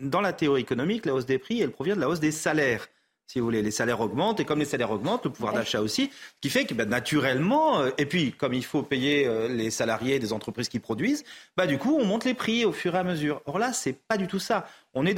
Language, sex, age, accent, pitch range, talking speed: French, male, 40-59, French, 125-185 Hz, 275 wpm